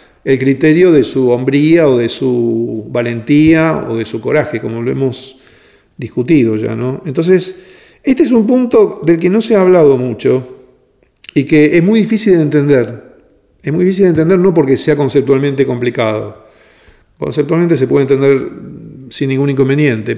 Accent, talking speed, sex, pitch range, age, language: Argentinian, 160 wpm, male, 130-165 Hz, 50-69, Spanish